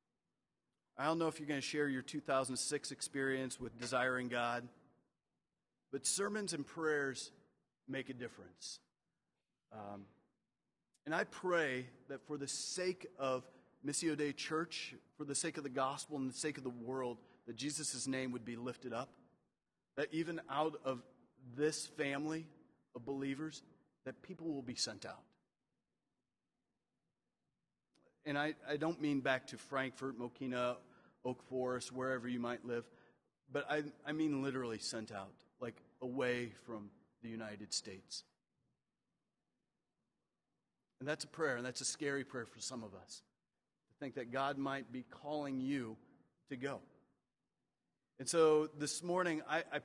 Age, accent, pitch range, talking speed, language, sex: 40-59, American, 125-150 Hz, 150 wpm, English, male